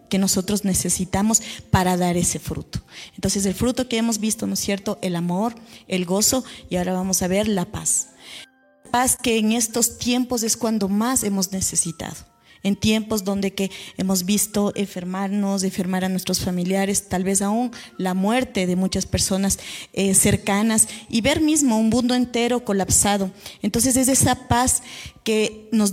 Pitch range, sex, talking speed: 195-230 Hz, female, 165 wpm